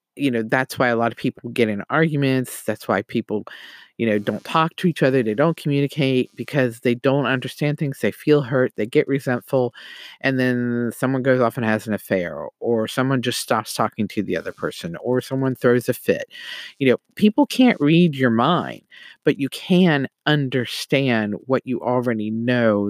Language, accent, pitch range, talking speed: English, American, 120-155 Hz, 195 wpm